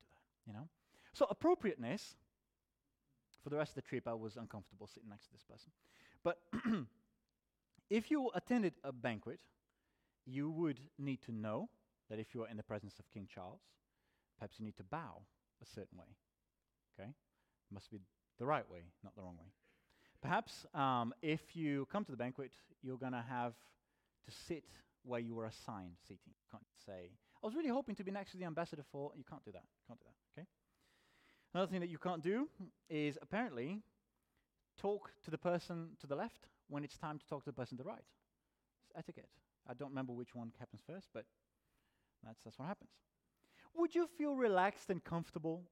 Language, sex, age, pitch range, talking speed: English, male, 30-49, 110-175 Hz, 190 wpm